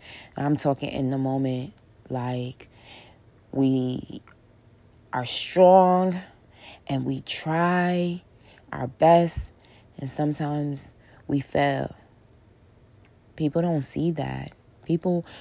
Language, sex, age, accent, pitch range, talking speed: English, female, 20-39, American, 120-145 Hz, 90 wpm